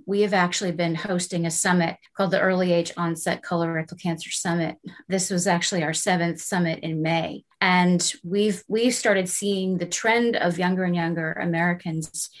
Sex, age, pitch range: female, 30-49, 170-205 Hz